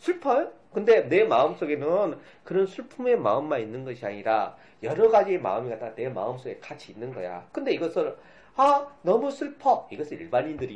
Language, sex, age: Korean, male, 40-59